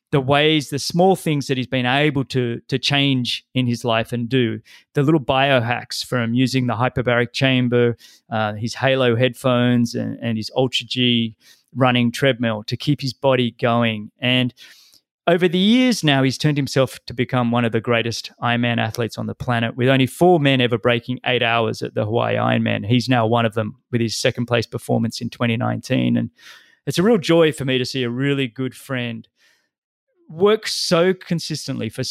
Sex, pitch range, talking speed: male, 120-155 Hz, 190 wpm